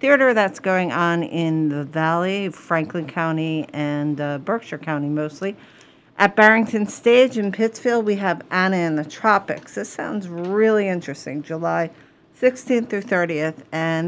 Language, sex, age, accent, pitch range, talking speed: English, female, 50-69, American, 150-205 Hz, 145 wpm